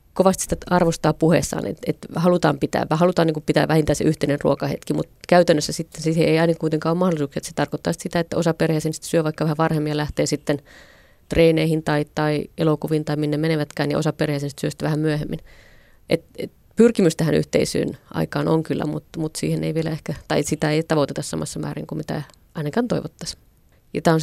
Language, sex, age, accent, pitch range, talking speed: Finnish, female, 30-49, native, 150-170 Hz, 200 wpm